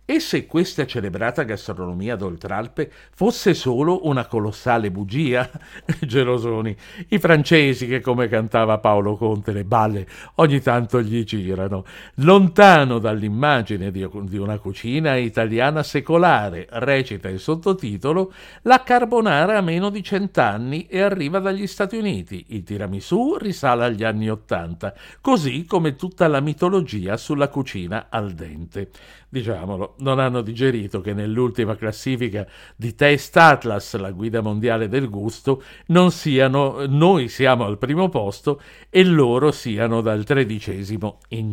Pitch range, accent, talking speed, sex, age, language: 105-150 Hz, native, 130 wpm, male, 60-79, Italian